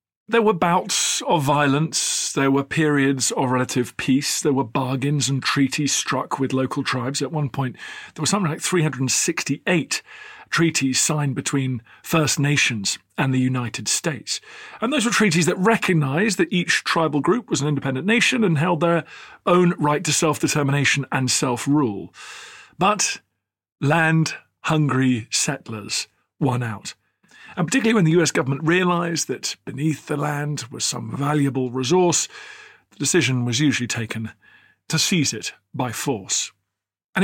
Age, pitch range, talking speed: 40-59, 135-175 Hz, 145 wpm